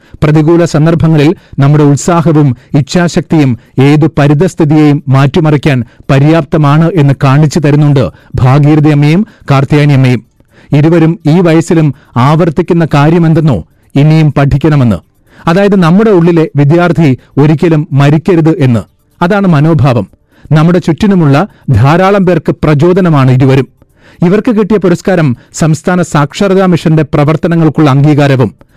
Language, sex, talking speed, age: Malayalam, male, 90 wpm, 40-59